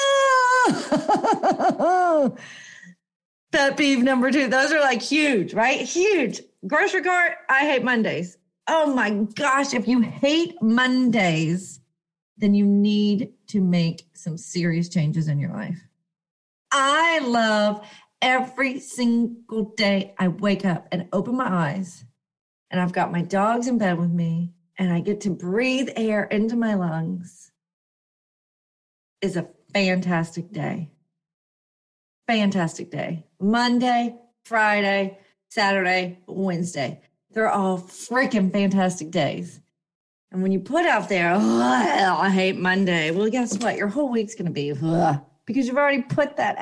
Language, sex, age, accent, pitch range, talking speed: English, female, 40-59, American, 175-255 Hz, 130 wpm